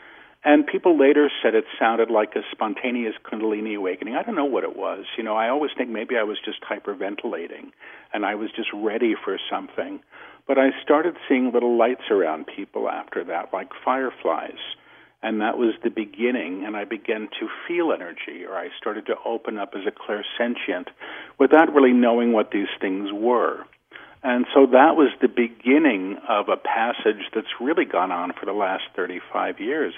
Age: 50-69